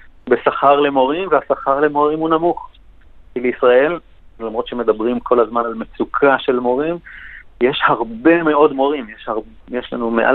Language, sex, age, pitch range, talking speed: Hebrew, male, 40-59, 120-160 Hz, 145 wpm